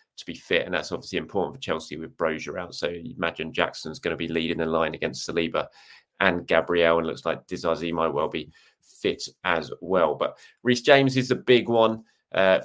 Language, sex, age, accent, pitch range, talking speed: English, male, 20-39, British, 90-120 Hz, 210 wpm